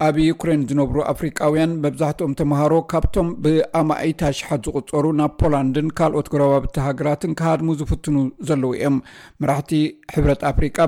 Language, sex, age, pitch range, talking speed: Amharic, male, 60-79, 140-160 Hz, 105 wpm